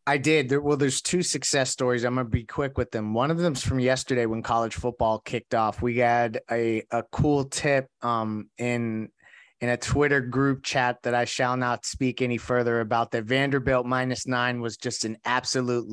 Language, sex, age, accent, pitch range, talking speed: English, male, 30-49, American, 120-140 Hz, 200 wpm